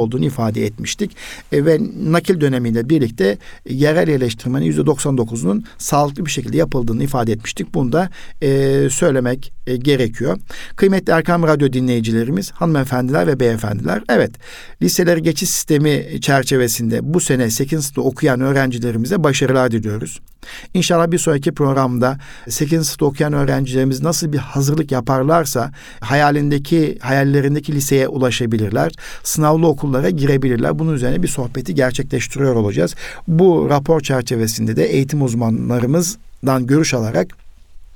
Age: 60-79